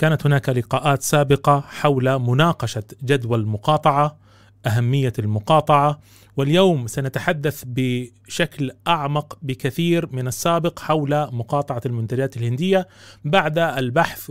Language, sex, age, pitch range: Arabic, male, 30-49, 140-190 Hz